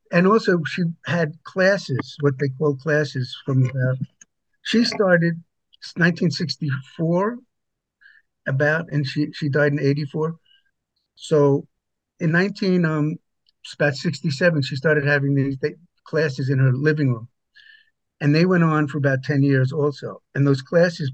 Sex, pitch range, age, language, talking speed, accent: male, 135-160 Hz, 50-69, English, 150 wpm, American